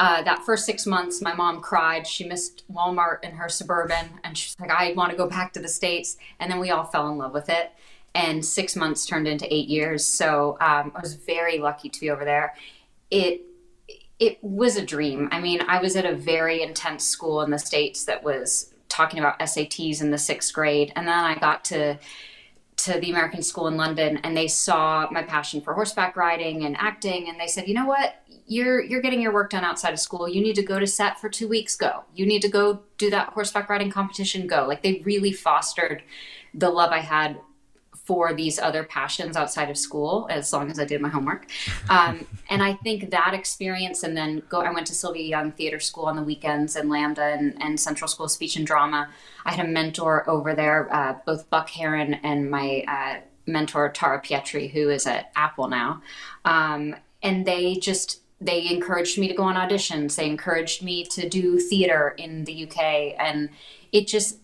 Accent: American